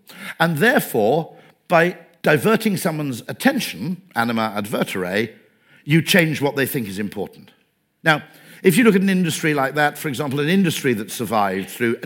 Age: 50-69